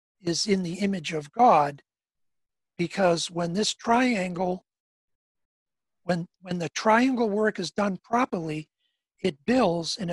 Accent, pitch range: American, 175-220 Hz